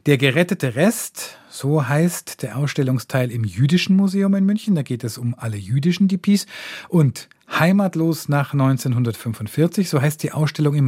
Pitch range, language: 120-155 Hz, German